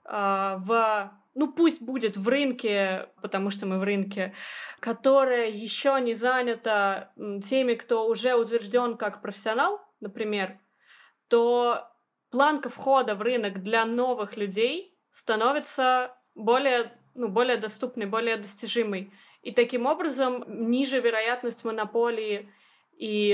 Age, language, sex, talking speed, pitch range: 20-39, Russian, female, 115 wpm, 205-245 Hz